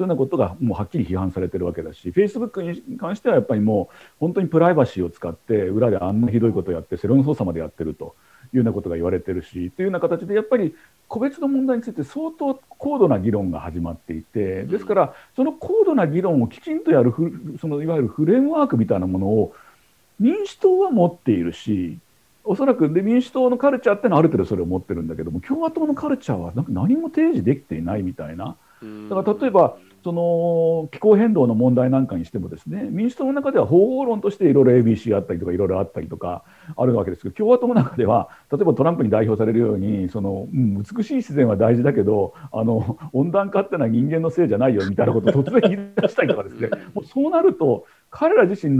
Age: 50-69